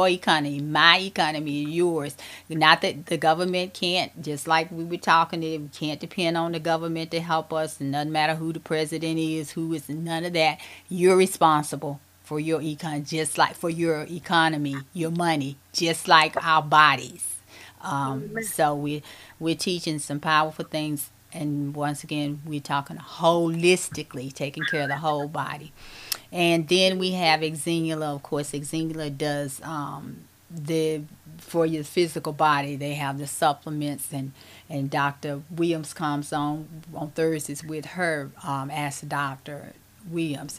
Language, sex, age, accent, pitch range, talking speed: English, female, 30-49, American, 145-165 Hz, 155 wpm